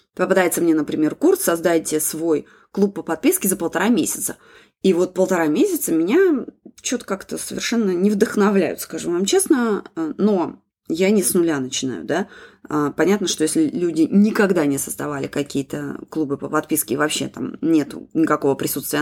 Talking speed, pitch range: 155 wpm, 160-220 Hz